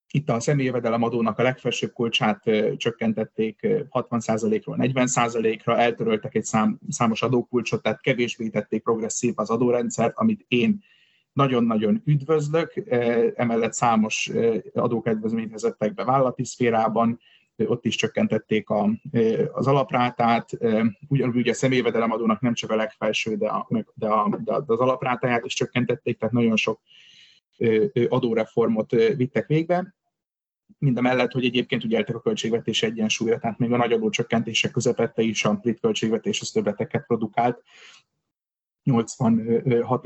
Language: Hungarian